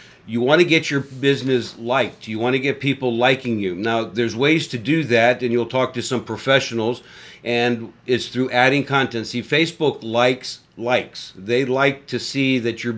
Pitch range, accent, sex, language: 115-135 Hz, American, male, English